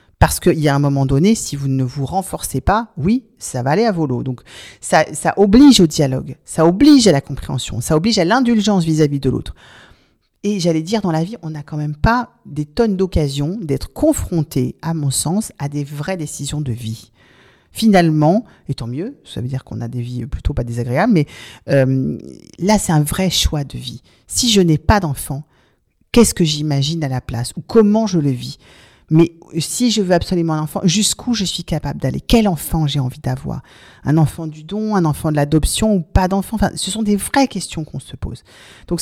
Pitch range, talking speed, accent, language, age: 140-200 Hz, 215 wpm, French, French, 40-59